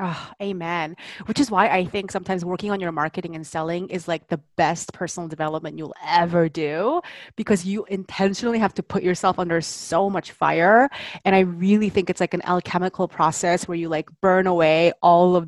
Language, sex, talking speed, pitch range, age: English, female, 190 wpm, 170-210 Hz, 20-39